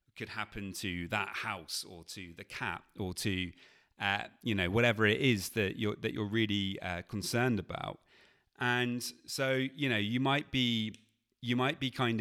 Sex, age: male, 30-49